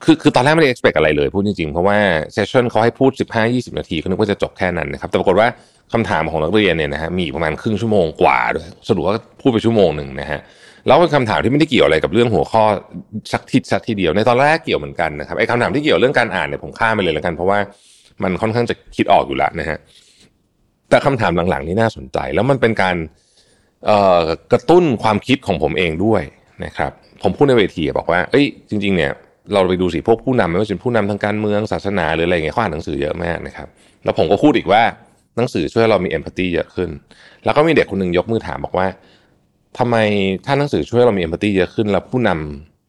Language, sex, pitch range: Thai, male, 90-115 Hz